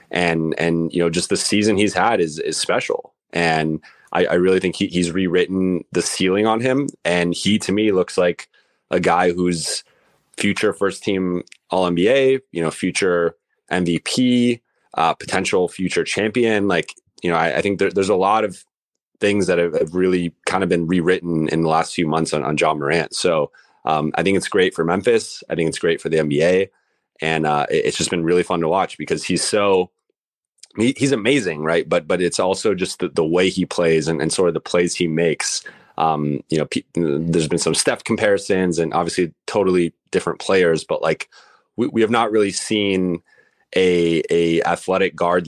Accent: American